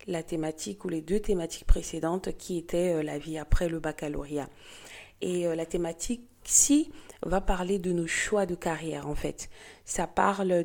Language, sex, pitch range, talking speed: French, female, 165-200 Hz, 165 wpm